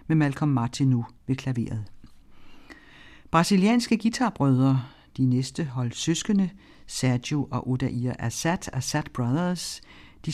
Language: Danish